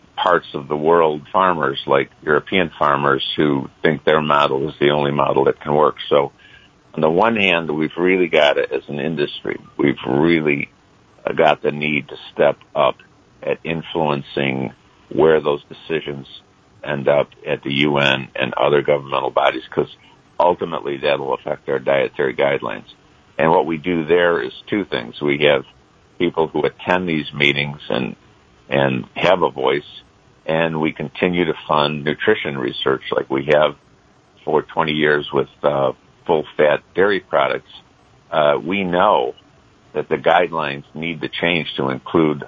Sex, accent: male, American